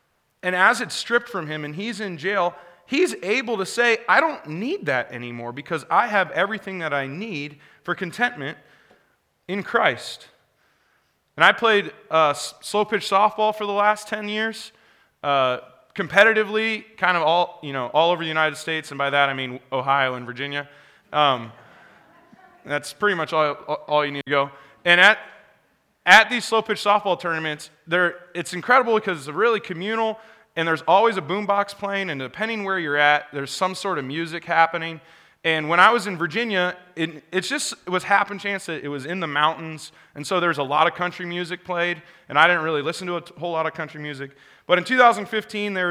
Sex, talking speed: male, 190 wpm